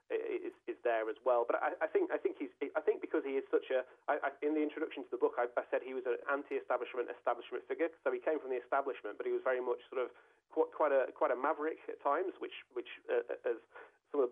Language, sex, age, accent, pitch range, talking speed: English, male, 30-49, British, 345-455 Hz, 265 wpm